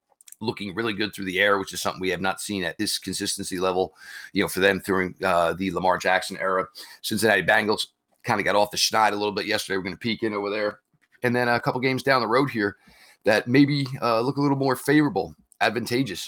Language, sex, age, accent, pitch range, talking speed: English, male, 40-59, American, 95-125 Hz, 235 wpm